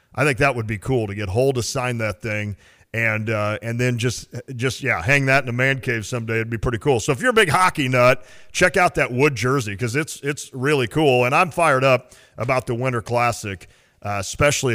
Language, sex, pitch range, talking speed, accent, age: English, male, 110-135 Hz, 235 wpm, American, 40-59